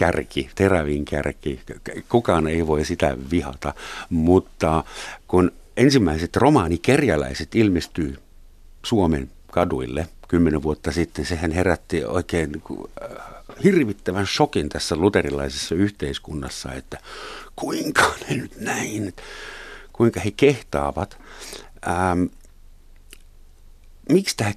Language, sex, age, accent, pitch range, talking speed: Finnish, male, 60-79, native, 75-100 Hz, 90 wpm